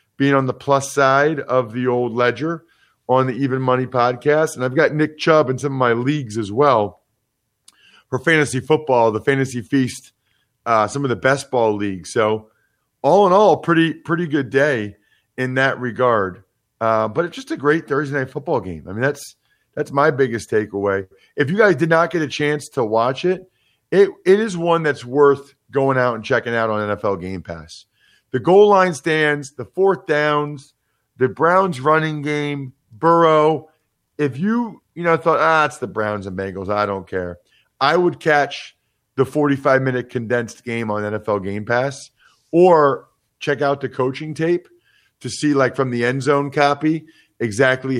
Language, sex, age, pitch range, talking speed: English, male, 40-59, 115-150 Hz, 185 wpm